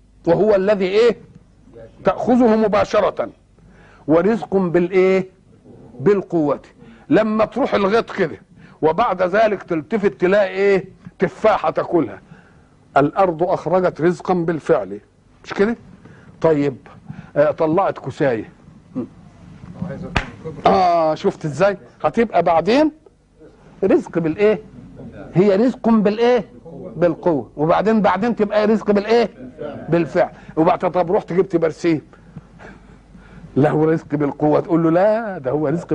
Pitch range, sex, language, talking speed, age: 160-215 Hz, male, Arabic, 105 wpm, 50-69